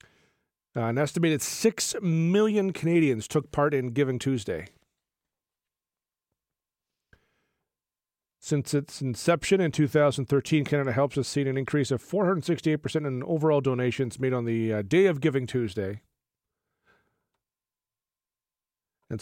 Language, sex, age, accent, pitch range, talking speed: English, male, 40-59, American, 120-155 Hz, 110 wpm